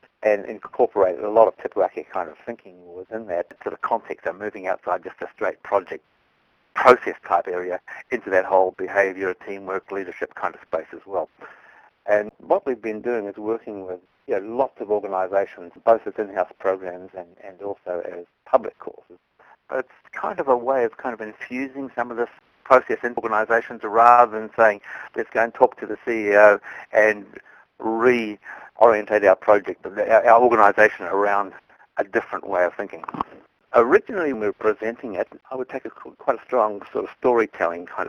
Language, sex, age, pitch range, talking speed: English, male, 50-69, 95-115 Hz, 180 wpm